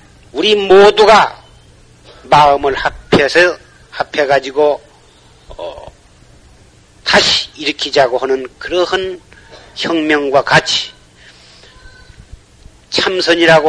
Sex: male